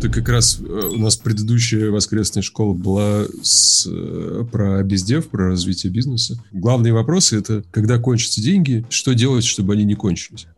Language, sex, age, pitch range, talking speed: English, male, 30-49, 95-120 Hz, 160 wpm